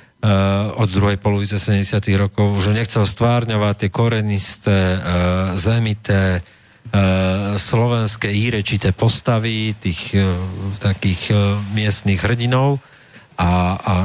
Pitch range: 95-110 Hz